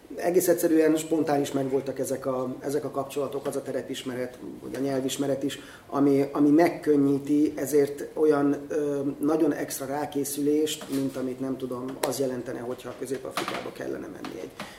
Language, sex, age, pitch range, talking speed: Hungarian, male, 30-49, 130-150 Hz, 145 wpm